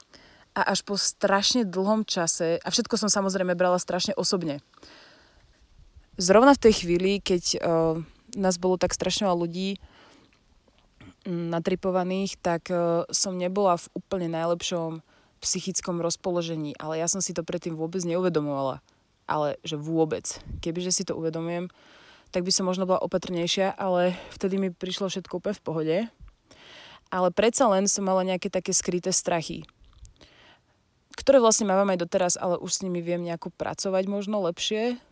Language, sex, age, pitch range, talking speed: Slovak, female, 20-39, 170-195 Hz, 145 wpm